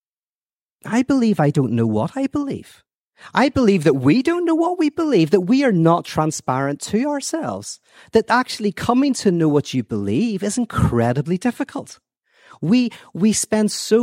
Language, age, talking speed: English, 40-59, 165 wpm